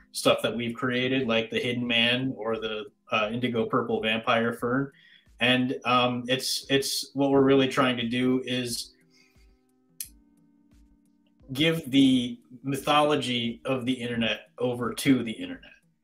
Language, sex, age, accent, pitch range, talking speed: English, male, 30-49, American, 110-135 Hz, 135 wpm